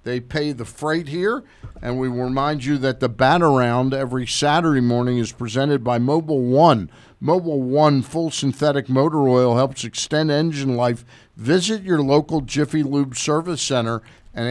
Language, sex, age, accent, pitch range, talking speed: English, male, 50-69, American, 120-150 Hz, 160 wpm